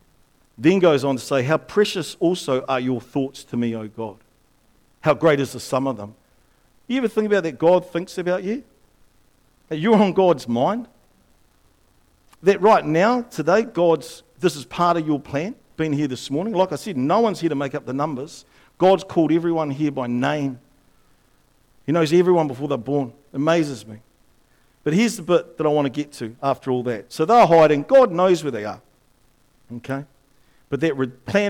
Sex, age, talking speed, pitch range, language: male, 50-69, 190 wpm, 130-185 Hz, English